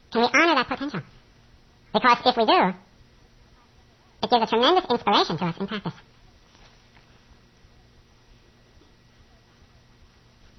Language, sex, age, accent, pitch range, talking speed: English, male, 50-69, American, 175-245 Hz, 95 wpm